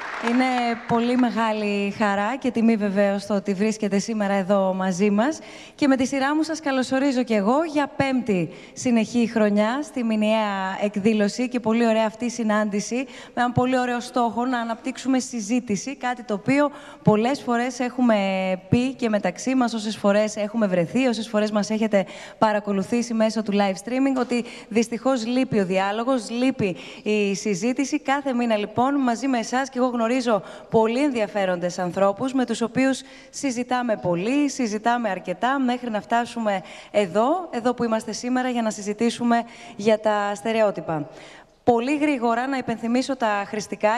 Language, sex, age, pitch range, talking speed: Greek, female, 20-39, 205-250 Hz, 155 wpm